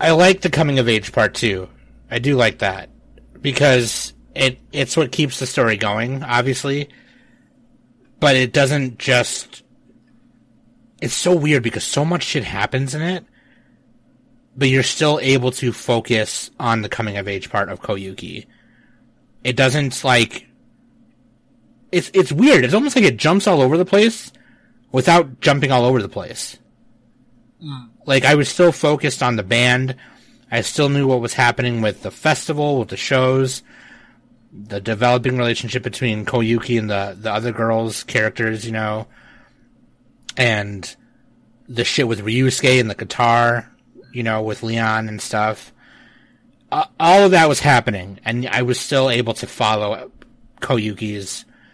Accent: American